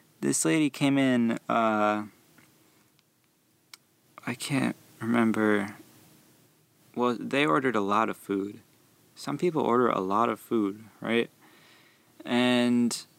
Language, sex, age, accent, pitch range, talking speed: English, male, 20-39, American, 105-120 Hz, 110 wpm